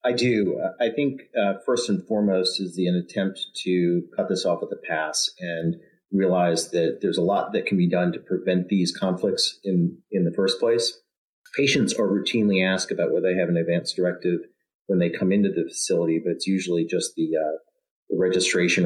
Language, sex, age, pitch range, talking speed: English, male, 40-59, 85-105 Hz, 200 wpm